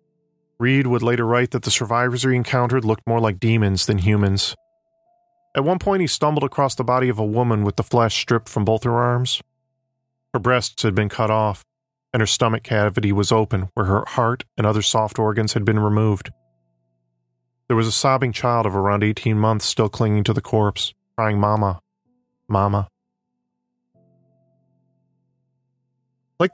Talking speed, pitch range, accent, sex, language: 165 wpm, 105-130 Hz, American, male, English